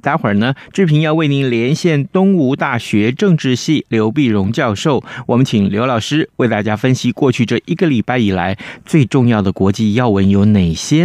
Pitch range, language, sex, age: 105-160 Hz, Chinese, male, 30-49